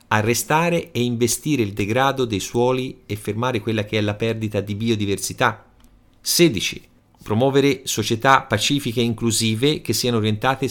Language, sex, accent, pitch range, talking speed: Italian, male, native, 105-140 Hz, 140 wpm